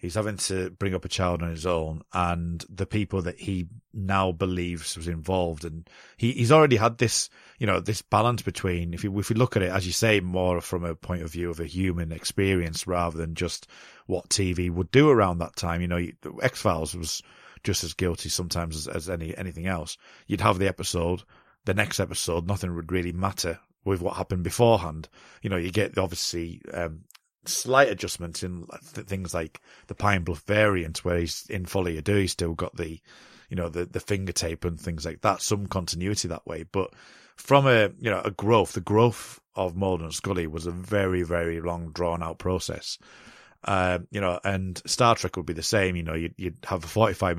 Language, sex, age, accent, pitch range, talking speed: English, male, 30-49, British, 85-100 Hz, 210 wpm